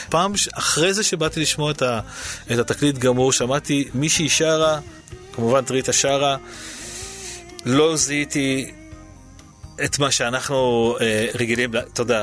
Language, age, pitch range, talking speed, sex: Hebrew, 30-49, 110-140 Hz, 110 wpm, male